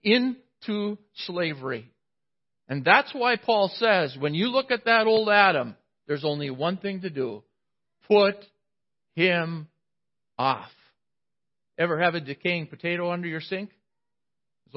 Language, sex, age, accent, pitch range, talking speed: English, male, 50-69, American, 145-200 Hz, 130 wpm